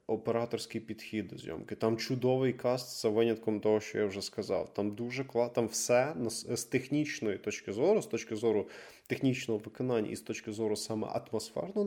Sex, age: male, 20-39